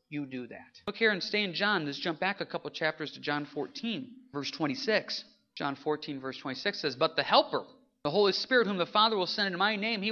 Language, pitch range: English, 190-260 Hz